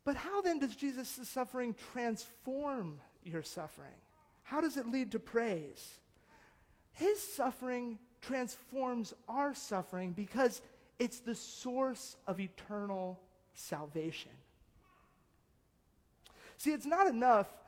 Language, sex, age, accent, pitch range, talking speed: English, male, 30-49, American, 185-260 Hz, 105 wpm